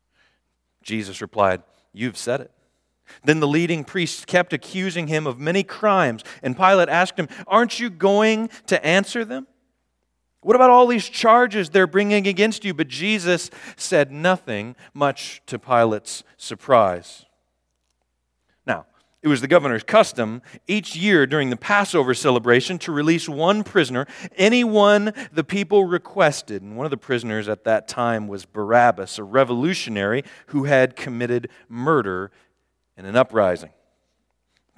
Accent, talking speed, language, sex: American, 140 wpm, English, male